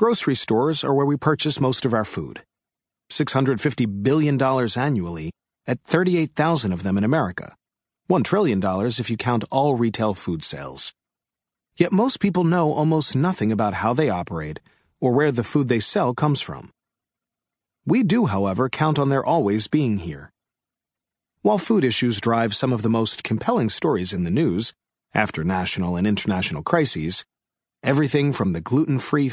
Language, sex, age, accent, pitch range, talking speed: English, male, 40-59, American, 105-145 Hz, 160 wpm